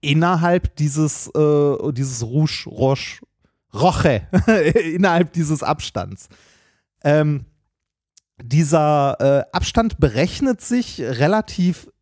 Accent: German